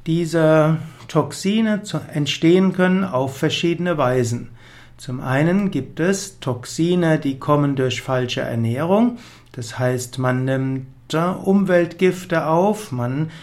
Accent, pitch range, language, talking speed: German, 130-165 Hz, German, 105 wpm